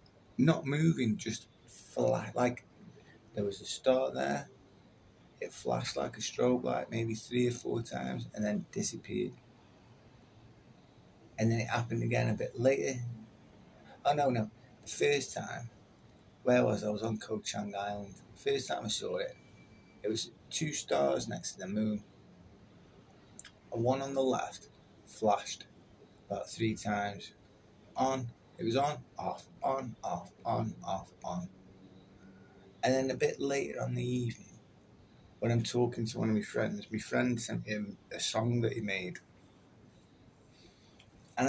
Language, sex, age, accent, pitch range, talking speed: English, male, 30-49, British, 105-125 Hz, 150 wpm